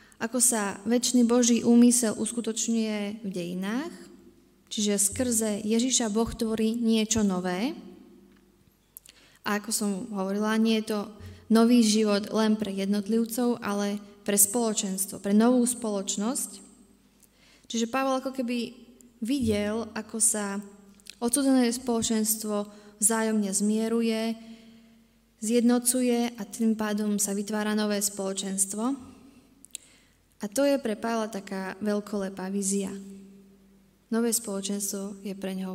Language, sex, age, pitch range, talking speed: Slovak, female, 20-39, 200-235 Hz, 110 wpm